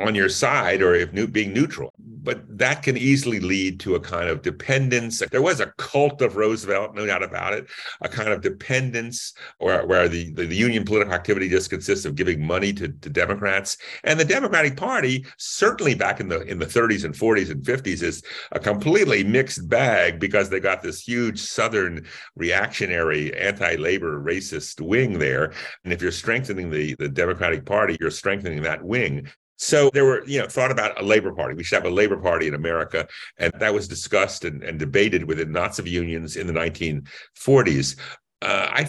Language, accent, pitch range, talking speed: English, American, 90-130 Hz, 195 wpm